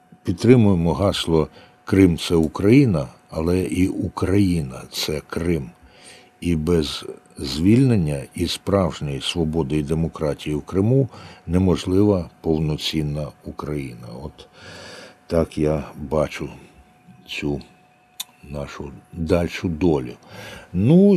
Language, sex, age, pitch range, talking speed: Ukrainian, male, 60-79, 80-105 Hz, 95 wpm